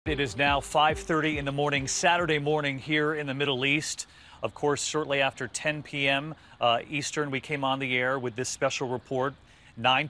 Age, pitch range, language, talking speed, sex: 40-59, 125-145 Hz, English, 185 wpm, male